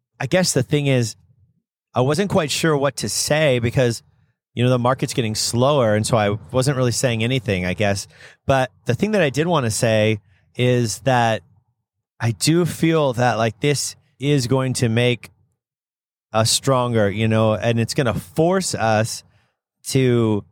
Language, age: English, 30-49